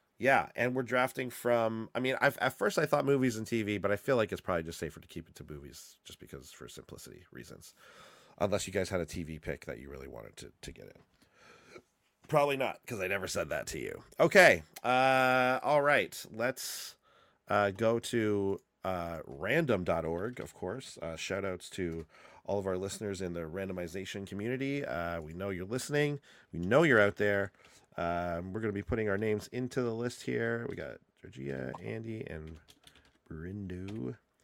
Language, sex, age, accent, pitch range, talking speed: English, male, 30-49, American, 85-120 Hz, 190 wpm